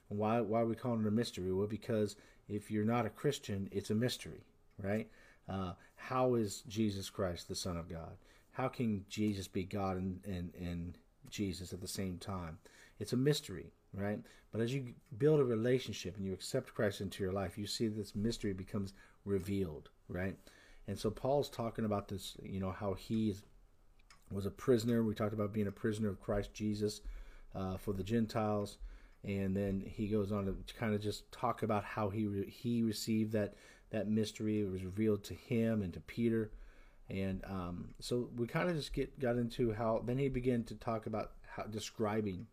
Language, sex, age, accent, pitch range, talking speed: English, male, 50-69, American, 95-115 Hz, 195 wpm